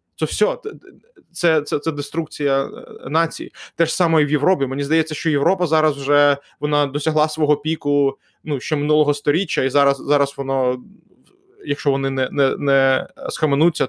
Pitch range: 140-160 Hz